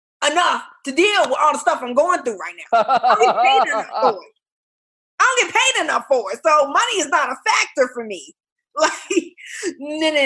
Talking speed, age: 205 wpm, 20-39